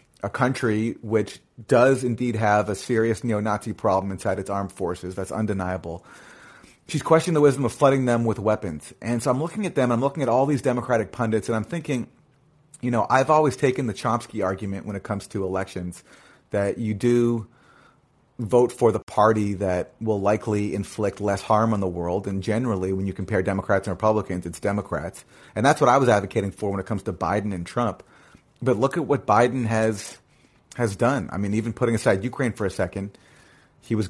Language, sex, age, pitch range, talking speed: English, male, 30-49, 100-125 Hz, 200 wpm